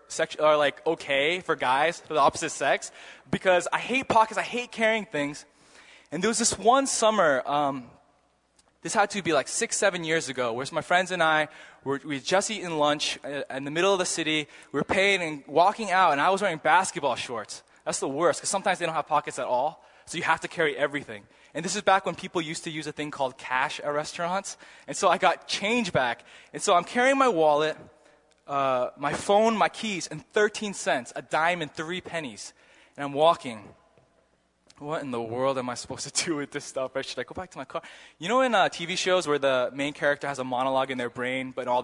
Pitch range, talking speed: 140-185 Hz, 230 wpm